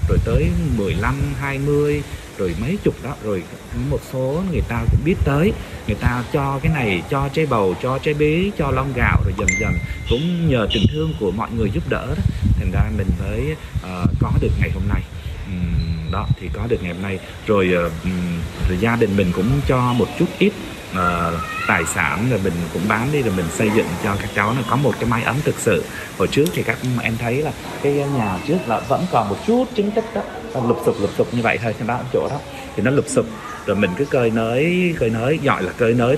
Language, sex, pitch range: Vietnamese, male, 95-135 Hz